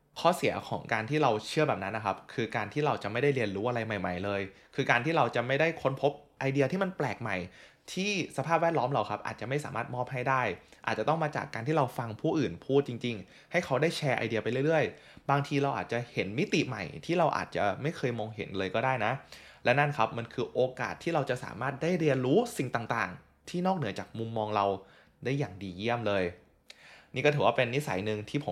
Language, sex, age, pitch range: Thai, male, 20-39, 105-140 Hz